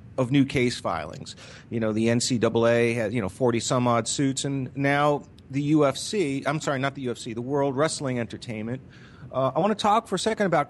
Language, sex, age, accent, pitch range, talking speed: English, male, 40-59, American, 120-145 Hz, 210 wpm